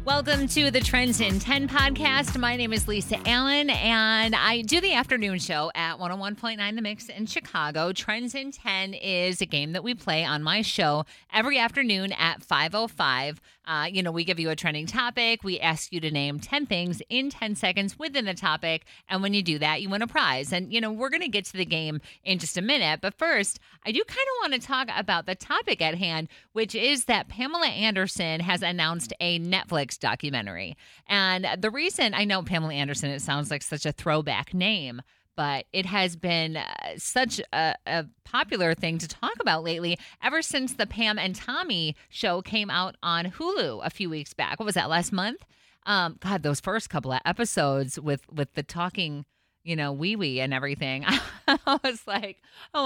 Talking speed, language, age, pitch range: 200 wpm, English, 30-49, 160-225 Hz